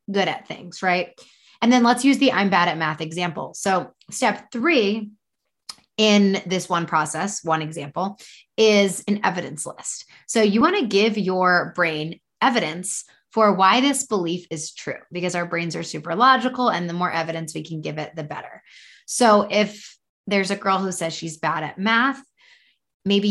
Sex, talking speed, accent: female, 180 wpm, American